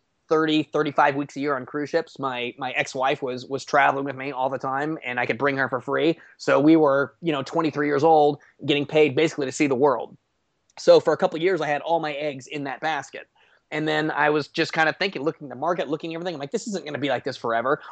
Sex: male